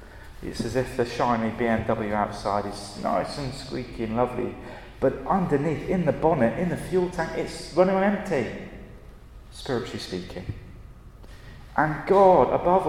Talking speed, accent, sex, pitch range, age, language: 140 wpm, British, male, 120-175 Hz, 30-49, English